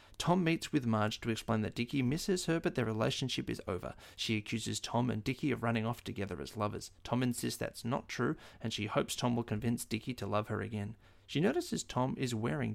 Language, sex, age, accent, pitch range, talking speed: English, male, 30-49, Australian, 105-125 Hz, 220 wpm